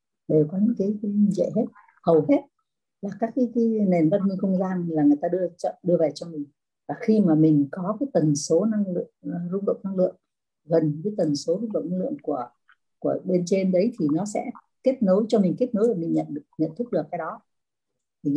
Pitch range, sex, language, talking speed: 170-235 Hz, female, Vietnamese, 240 wpm